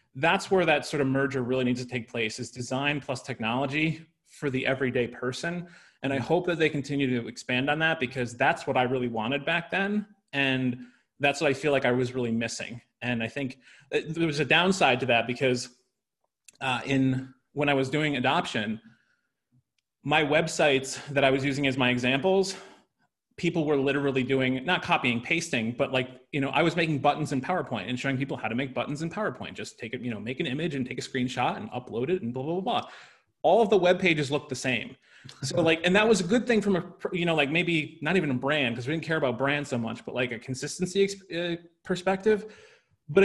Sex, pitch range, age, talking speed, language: male, 125-165 Hz, 30-49, 220 wpm, English